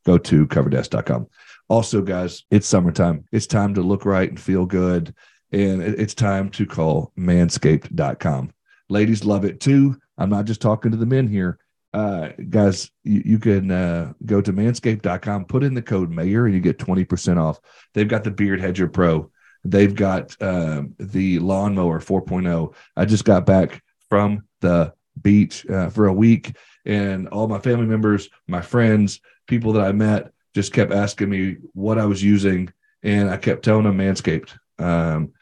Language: English